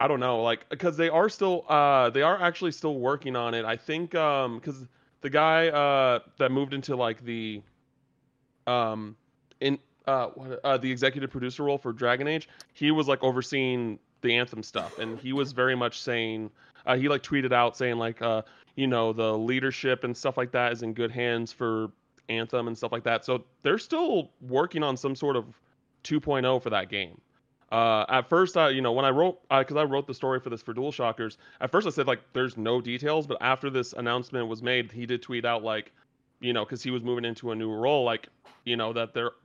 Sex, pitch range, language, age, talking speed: male, 120-145 Hz, English, 30-49, 220 wpm